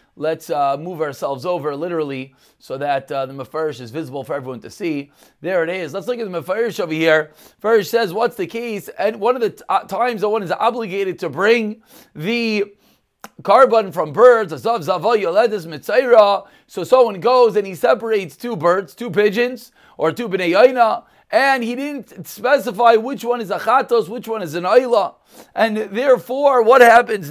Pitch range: 185-250 Hz